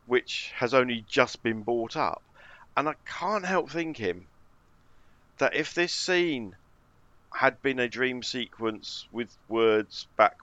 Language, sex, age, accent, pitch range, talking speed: English, male, 50-69, British, 100-135 Hz, 140 wpm